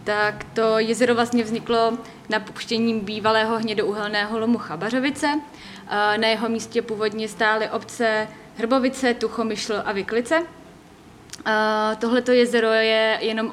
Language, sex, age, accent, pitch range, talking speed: Czech, female, 20-39, native, 215-235 Hz, 105 wpm